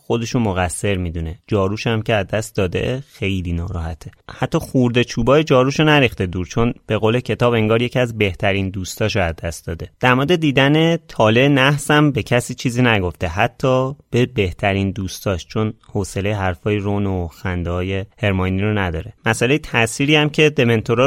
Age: 30-49